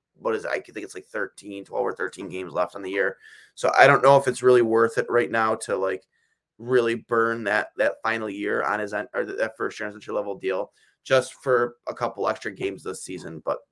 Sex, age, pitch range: male, 20-39, 110-135 Hz